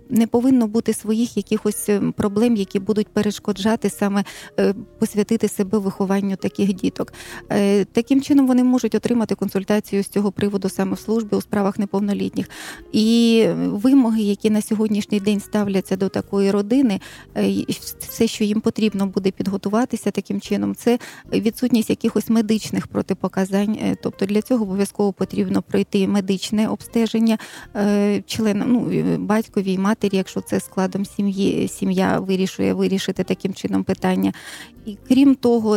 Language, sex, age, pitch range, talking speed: Ukrainian, female, 30-49, 195-225 Hz, 140 wpm